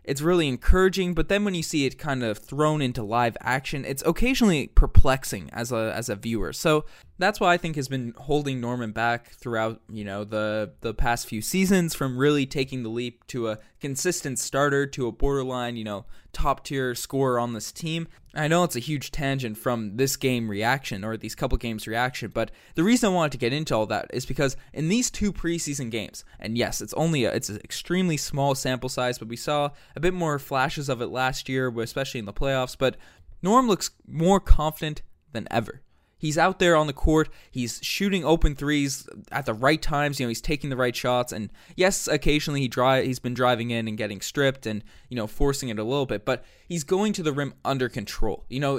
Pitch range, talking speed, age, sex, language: 120-150 Hz, 220 wpm, 20-39, male, English